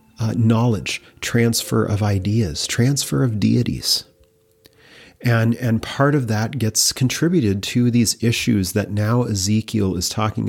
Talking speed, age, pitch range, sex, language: 130 wpm, 40-59, 100-120 Hz, male, English